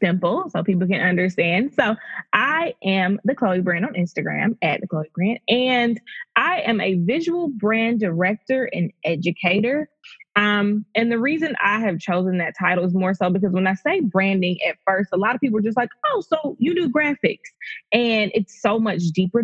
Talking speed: 190 wpm